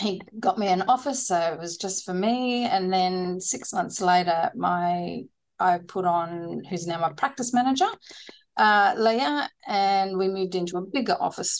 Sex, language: female, English